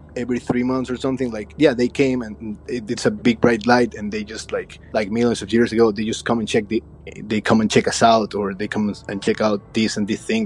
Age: 20-39